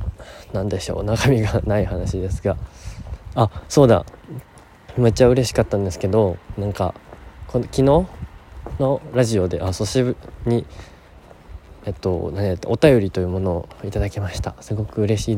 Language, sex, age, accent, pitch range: Japanese, male, 20-39, native, 90-105 Hz